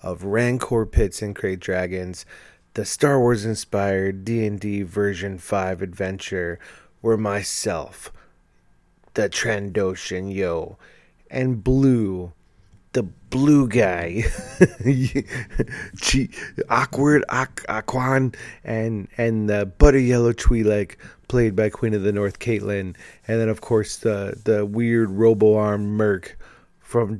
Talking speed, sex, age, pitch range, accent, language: 115 wpm, male, 30-49, 95-125 Hz, American, English